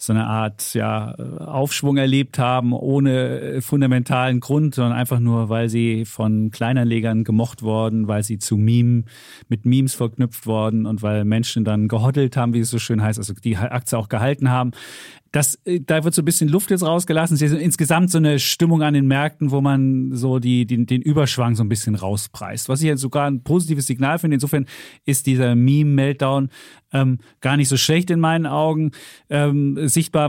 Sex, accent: male, German